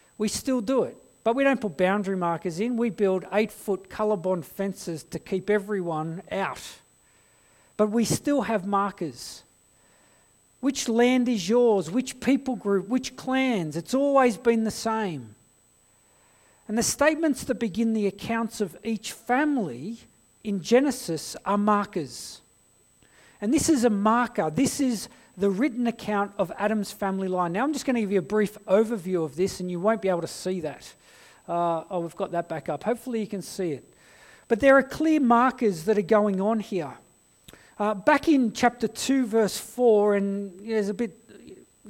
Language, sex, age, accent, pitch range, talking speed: English, male, 40-59, Australian, 190-240 Hz, 170 wpm